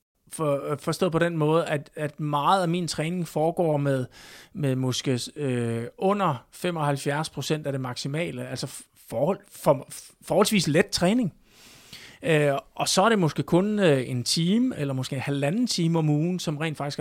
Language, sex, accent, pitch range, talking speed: Danish, male, native, 140-175 Hz, 165 wpm